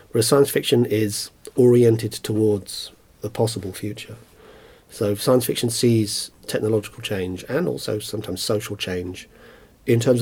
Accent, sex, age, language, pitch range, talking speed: British, male, 40-59, English, 95-115 Hz, 130 wpm